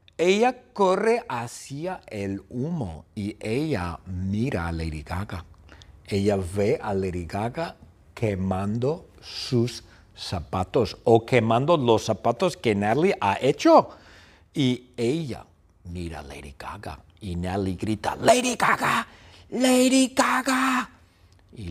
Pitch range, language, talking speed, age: 85-120 Hz, English, 115 wpm, 50-69